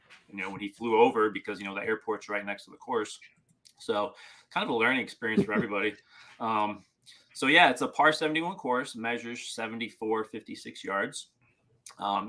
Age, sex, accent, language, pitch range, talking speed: 30-49, male, American, English, 100-115 Hz, 175 wpm